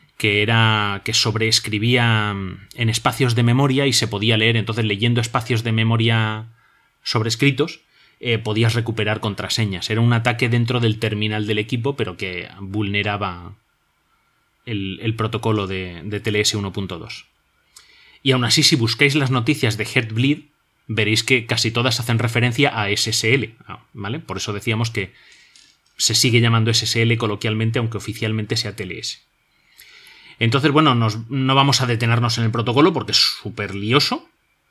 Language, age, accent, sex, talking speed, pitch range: Spanish, 30-49, Spanish, male, 145 wpm, 105-130 Hz